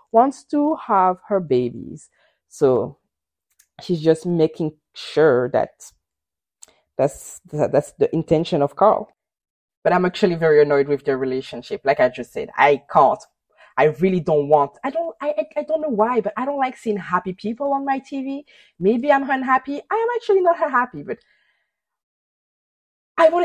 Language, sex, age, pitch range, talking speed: English, female, 20-39, 175-255 Hz, 160 wpm